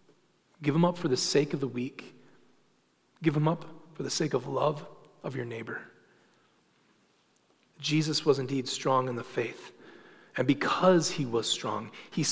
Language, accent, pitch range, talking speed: English, American, 135-175 Hz, 160 wpm